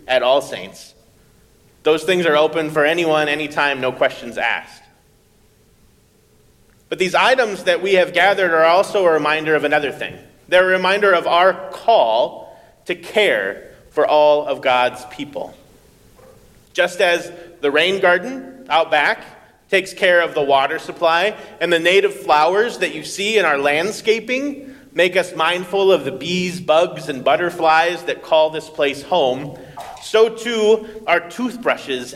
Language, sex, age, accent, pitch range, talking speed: English, male, 30-49, American, 140-185 Hz, 150 wpm